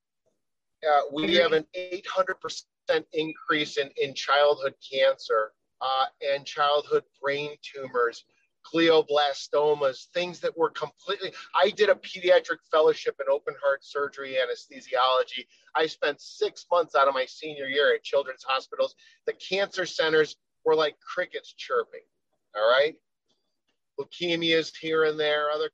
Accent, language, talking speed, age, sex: American, English, 130 wpm, 40-59, male